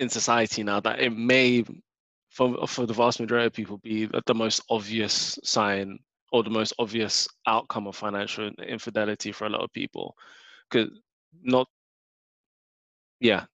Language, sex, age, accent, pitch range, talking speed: English, male, 20-39, British, 110-130 Hz, 155 wpm